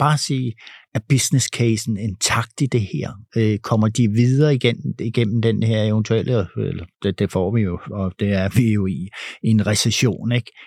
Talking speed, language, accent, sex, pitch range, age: 185 wpm, Danish, native, male, 120-150 Hz, 60-79